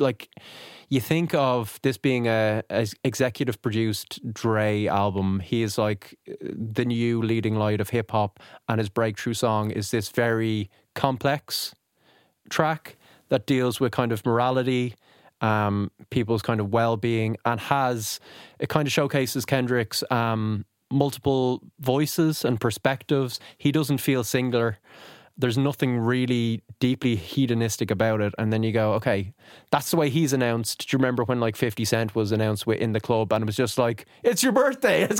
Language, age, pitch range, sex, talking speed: English, 20-39, 110-150 Hz, male, 165 wpm